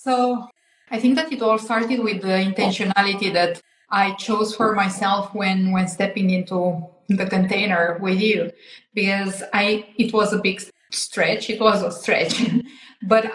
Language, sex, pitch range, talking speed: English, female, 195-230 Hz, 155 wpm